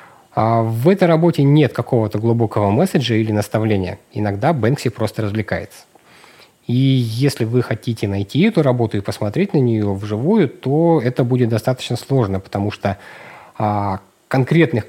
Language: Russian